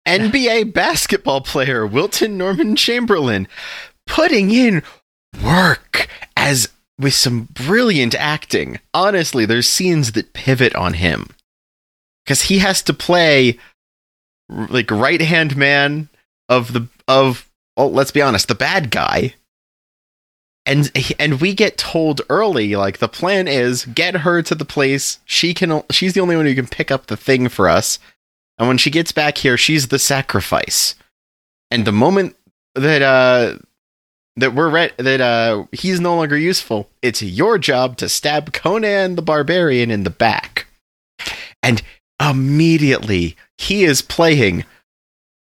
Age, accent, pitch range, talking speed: 30-49, American, 115-165 Hz, 140 wpm